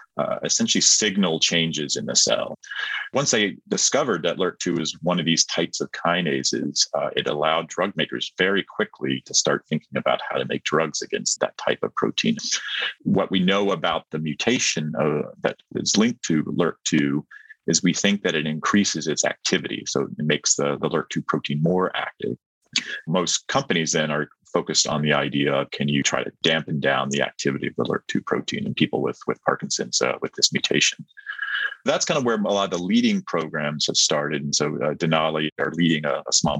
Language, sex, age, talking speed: English, male, 30-49, 195 wpm